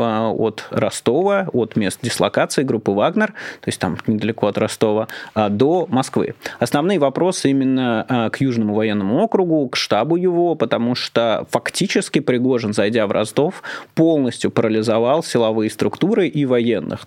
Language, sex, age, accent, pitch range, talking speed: Russian, male, 20-39, native, 115-135 Hz, 135 wpm